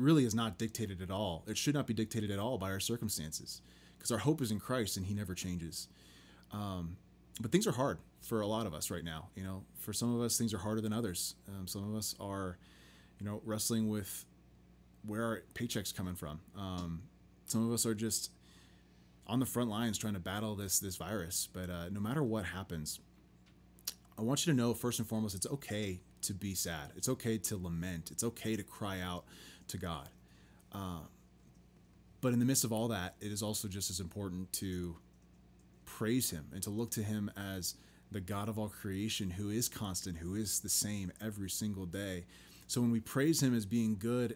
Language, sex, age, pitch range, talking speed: English, male, 20-39, 90-115 Hz, 210 wpm